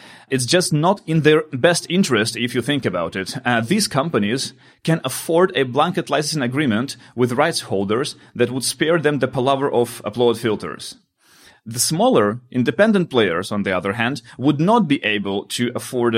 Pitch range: 105-135 Hz